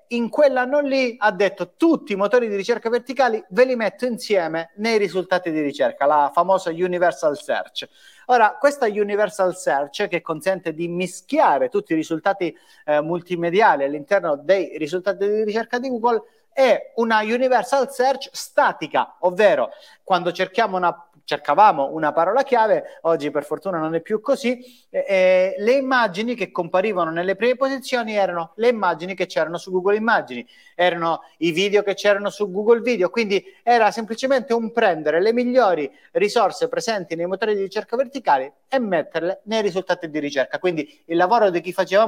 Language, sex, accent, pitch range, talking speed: Italian, male, native, 175-245 Hz, 160 wpm